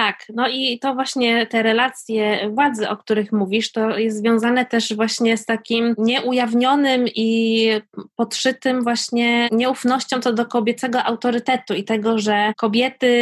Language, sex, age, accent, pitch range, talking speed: Polish, female, 20-39, native, 220-255 Hz, 140 wpm